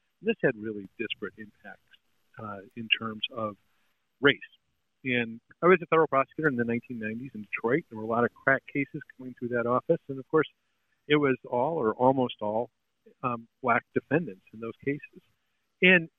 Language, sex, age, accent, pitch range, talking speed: English, male, 50-69, American, 115-145 Hz, 180 wpm